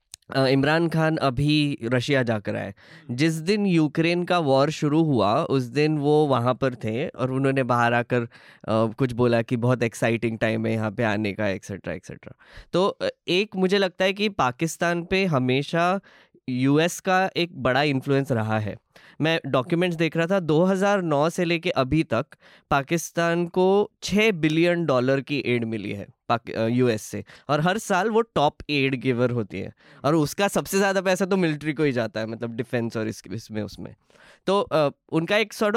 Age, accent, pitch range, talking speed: 20-39, native, 130-175 Hz, 180 wpm